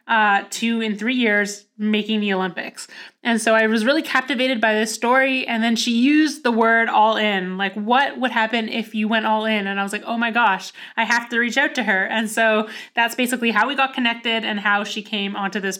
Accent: American